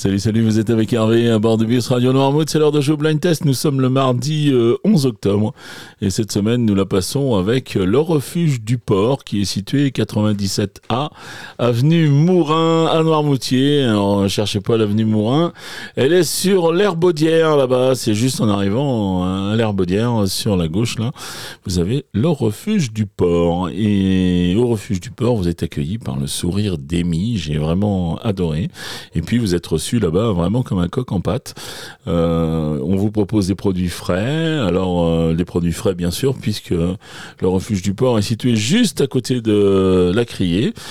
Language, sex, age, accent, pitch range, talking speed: French, male, 40-59, French, 95-140 Hz, 180 wpm